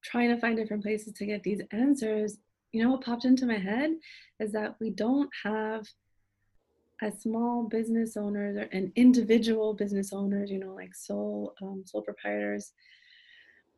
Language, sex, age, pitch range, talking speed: English, female, 20-39, 195-225 Hz, 160 wpm